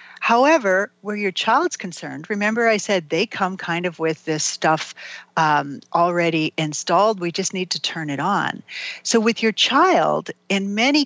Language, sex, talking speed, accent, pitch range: English, female, 170 wpm, American, 165-235 Hz